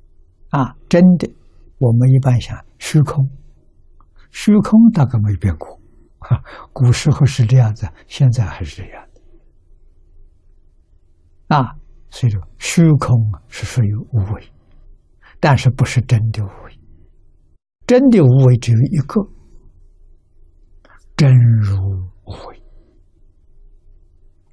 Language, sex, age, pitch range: Chinese, male, 60-79, 85-125 Hz